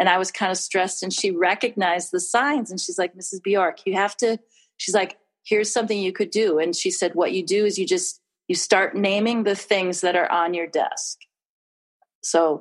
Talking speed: 220 wpm